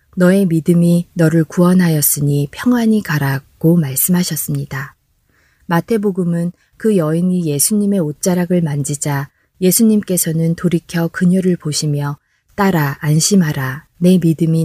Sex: female